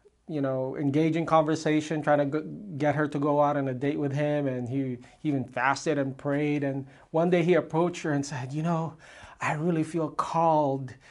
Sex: male